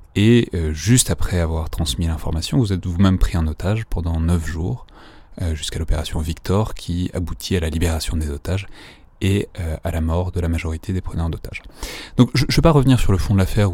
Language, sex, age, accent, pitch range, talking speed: French, male, 30-49, French, 85-115 Hz, 200 wpm